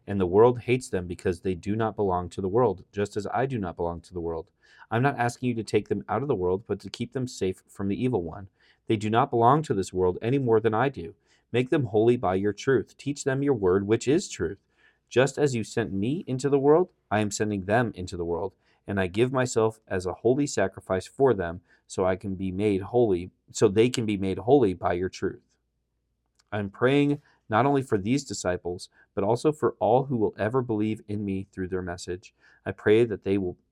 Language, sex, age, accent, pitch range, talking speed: English, male, 40-59, American, 95-120 Hz, 235 wpm